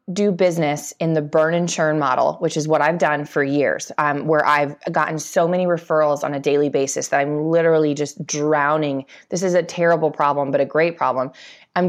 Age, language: 20-39, English